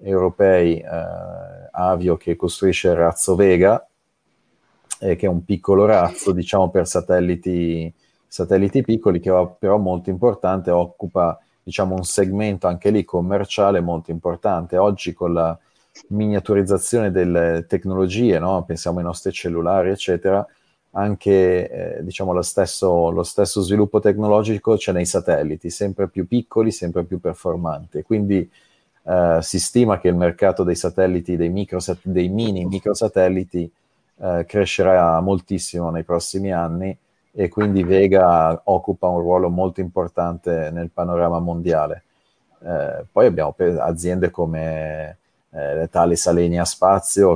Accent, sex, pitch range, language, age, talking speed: native, male, 85-100 Hz, Italian, 30-49, 130 wpm